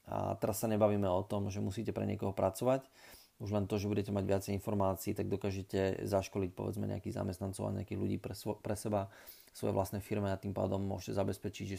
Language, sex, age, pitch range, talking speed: Slovak, male, 30-49, 100-115 Hz, 210 wpm